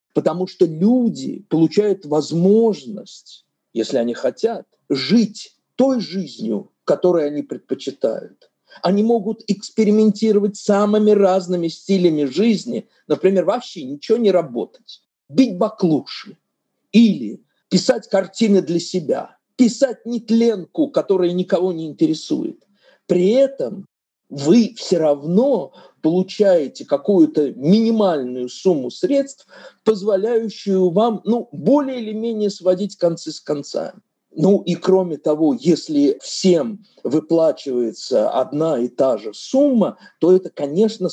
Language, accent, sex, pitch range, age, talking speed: Russian, native, male, 170-230 Hz, 50-69, 110 wpm